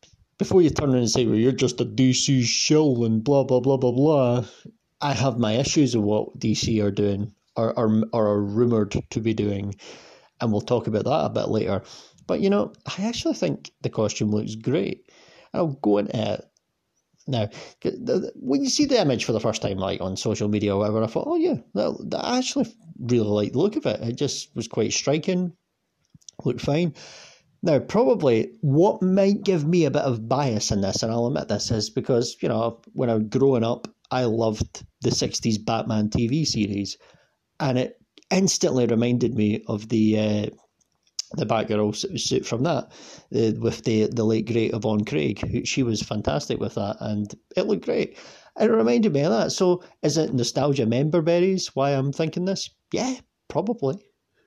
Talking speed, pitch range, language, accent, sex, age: 195 wpm, 110-155 Hz, English, British, male, 30-49